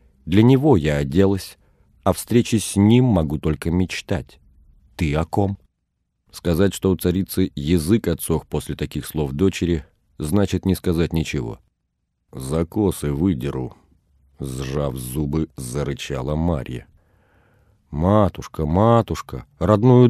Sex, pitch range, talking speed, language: male, 75-100 Hz, 110 wpm, Russian